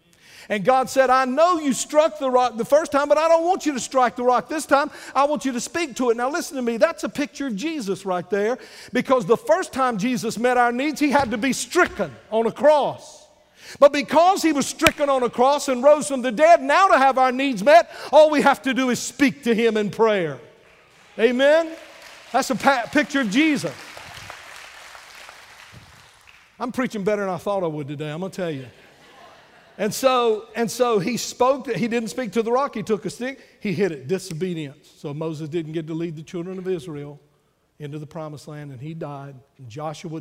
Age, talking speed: 50-69, 220 wpm